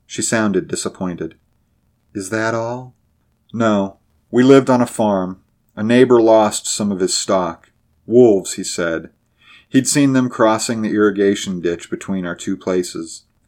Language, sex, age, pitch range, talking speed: English, male, 40-59, 90-115 Hz, 145 wpm